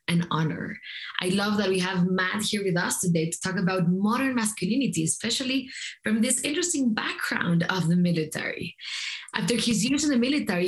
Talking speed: 175 wpm